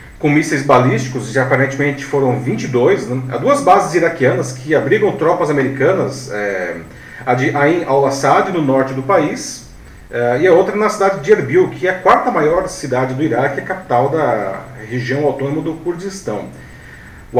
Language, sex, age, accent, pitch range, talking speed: Portuguese, male, 40-59, Brazilian, 130-180 Hz, 165 wpm